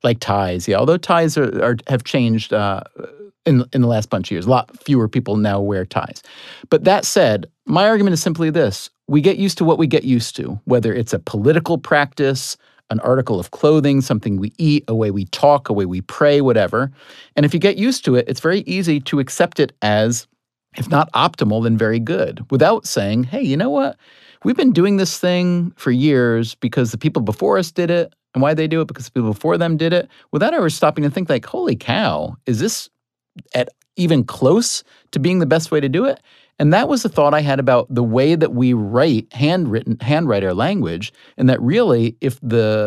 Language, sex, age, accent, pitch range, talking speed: English, male, 40-59, American, 115-160 Hz, 220 wpm